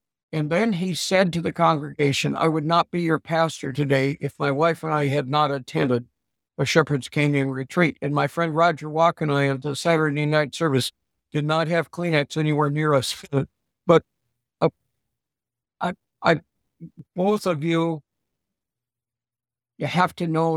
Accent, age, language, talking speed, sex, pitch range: American, 60-79, English, 160 wpm, male, 140-165 Hz